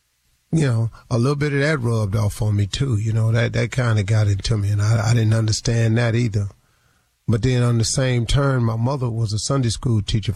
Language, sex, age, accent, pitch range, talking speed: English, male, 30-49, American, 110-120 Hz, 240 wpm